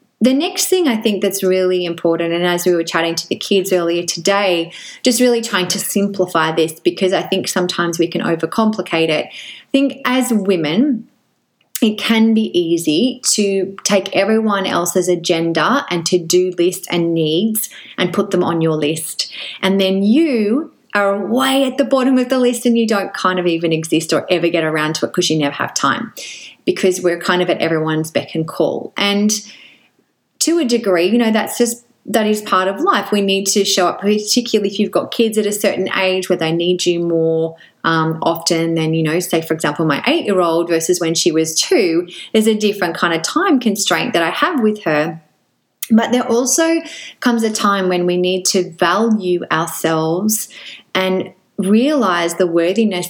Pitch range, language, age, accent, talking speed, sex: 170-225 Hz, English, 30-49, Australian, 195 wpm, female